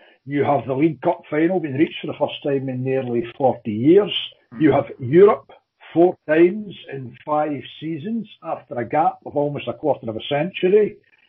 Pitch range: 135-180 Hz